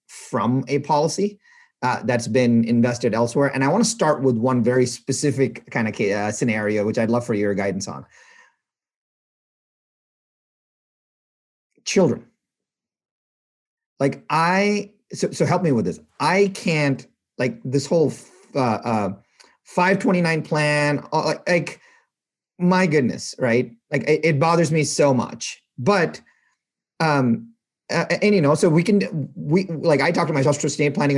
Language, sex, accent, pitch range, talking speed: English, male, American, 130-190 Hz, 150 wpm